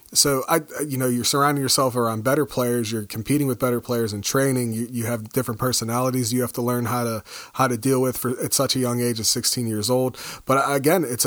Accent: American